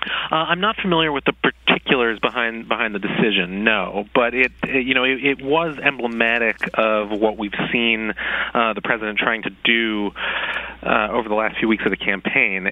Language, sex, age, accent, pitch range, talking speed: English, male, 30-49, American, 95-115 Hz, 190 wpm